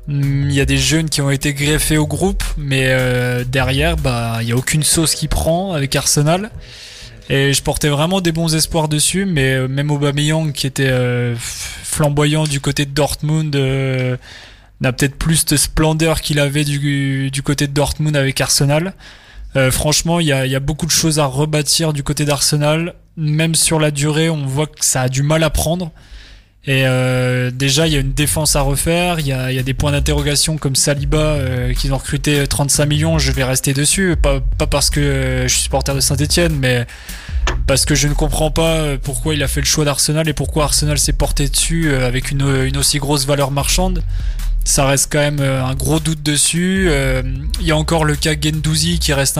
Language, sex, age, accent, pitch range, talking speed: French, male, 20-39, French, 135-155 Hz, 210 wpm